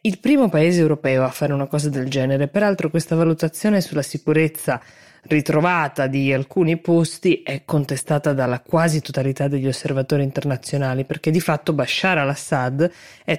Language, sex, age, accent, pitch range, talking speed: Italian, female, 20-39, native, 135-170 Hz, 150 wpm